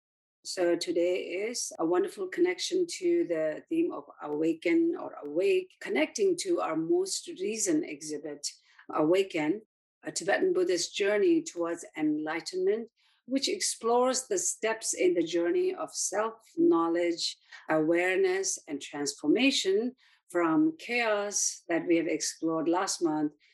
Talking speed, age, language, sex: 115 wpm, 50-69, English, female